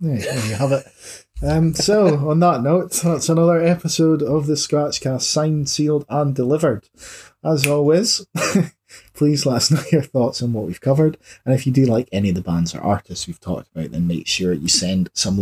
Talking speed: 200 wpm